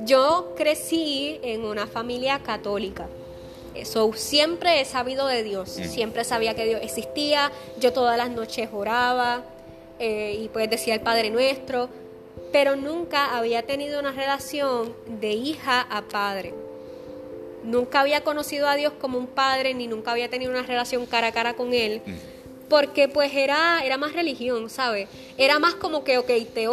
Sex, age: female, 20-39